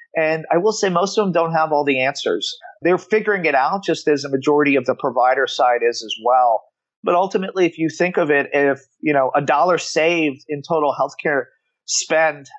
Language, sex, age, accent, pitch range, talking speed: English, male, 40-59, American, 135-165 Hz, 210 wpm